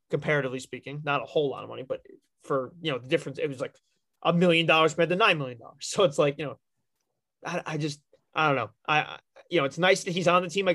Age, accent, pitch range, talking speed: 20-39, American, 145-175 Hz, 260 wpm